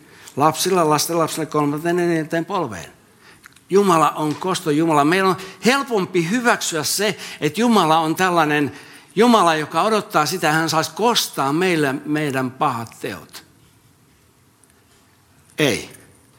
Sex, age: male, 60-79